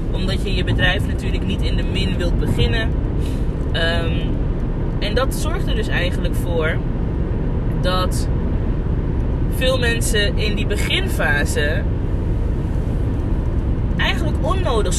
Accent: Dutch